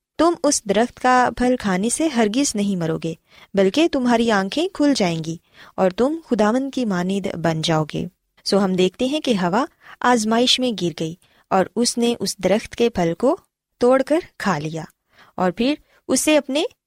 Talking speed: 170 wpm